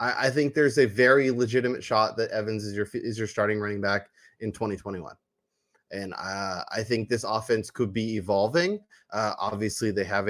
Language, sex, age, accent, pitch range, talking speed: English, male, 20-39, American, 105-125 Hz, 180 wpm